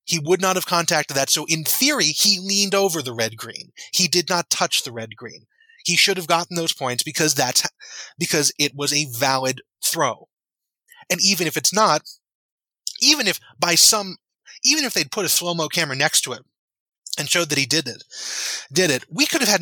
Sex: male